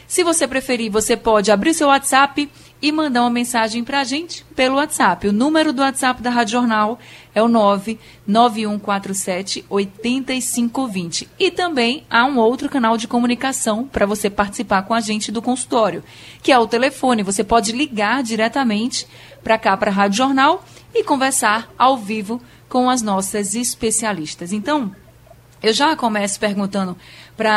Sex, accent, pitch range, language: female, Brazilian, 195-260 Hz, Portuguese